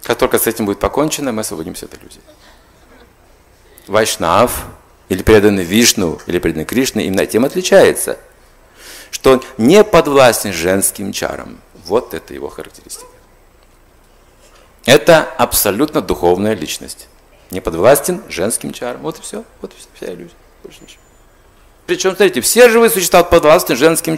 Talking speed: 135 wpm